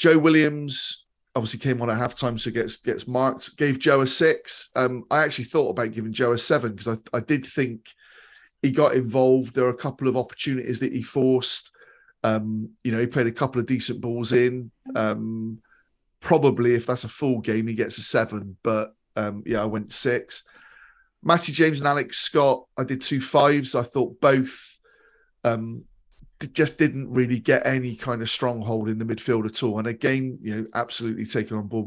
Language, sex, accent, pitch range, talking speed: English, male, British, 110-130 Hz, 195 wpm